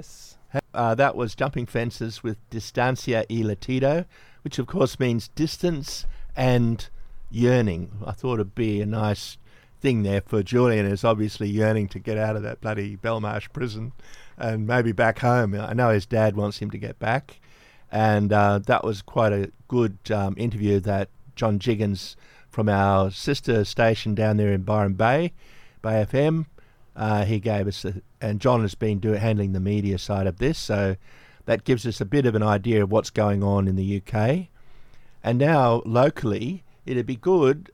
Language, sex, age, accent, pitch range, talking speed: English, male, 60-79, Australian, 105-130 Hz, 175 wpm